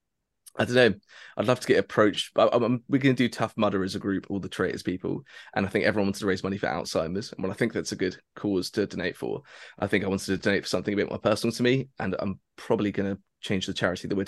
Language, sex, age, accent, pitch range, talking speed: English, male, 20-39, British, 95-110 Hz, 285 wpm